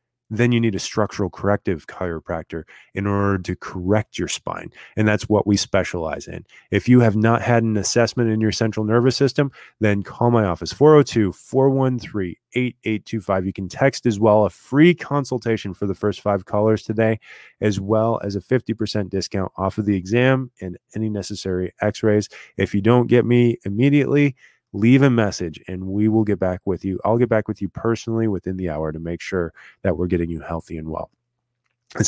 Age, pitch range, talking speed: 20-39, 95-120 Hz, 185 wpm